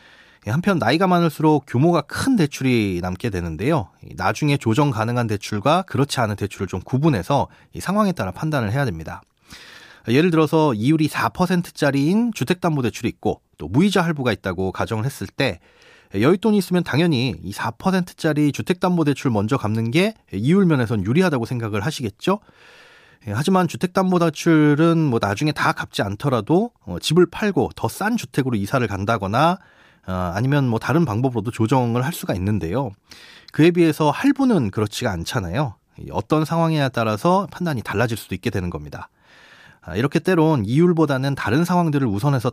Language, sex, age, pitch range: Korean, male, 30-49, 110-170 Hz